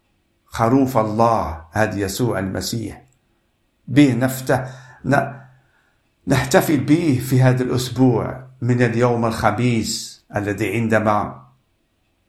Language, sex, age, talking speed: Arabic, male, 50-69, 90 wpm